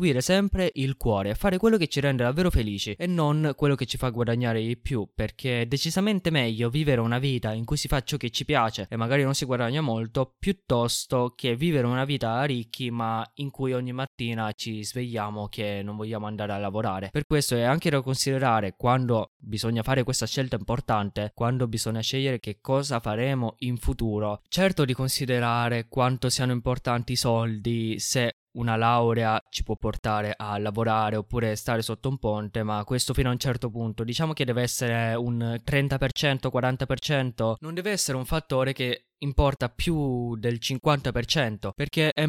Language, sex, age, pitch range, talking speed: Italian, male, 20-39, 115-140 Hz, 180 wpm